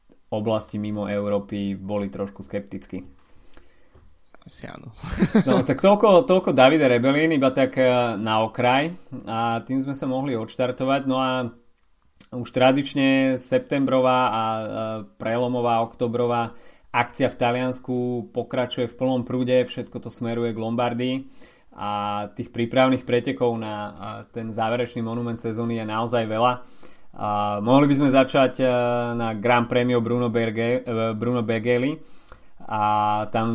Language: Slovak